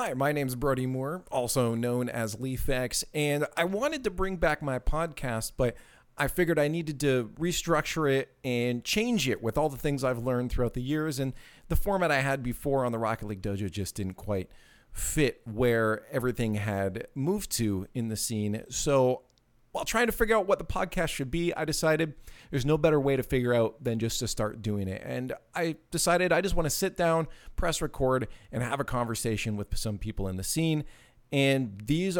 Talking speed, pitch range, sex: 205 wpm, 115-150 Hz, male